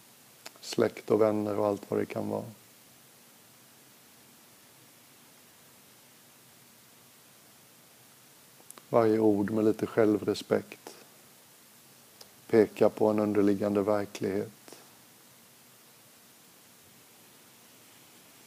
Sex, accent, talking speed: male, native, 60 wpm